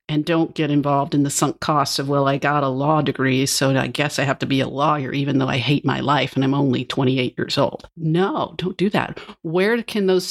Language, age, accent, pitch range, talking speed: English, 50-69, American, 145-175 Hz, 250 wpm